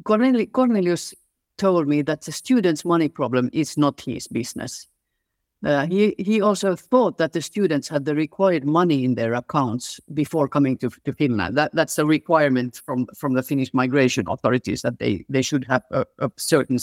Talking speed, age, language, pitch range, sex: 180 wpm, 50-69, Finnish, 130-165 Hz, female